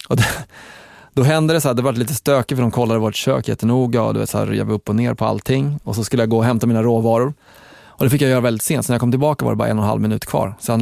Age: 20-39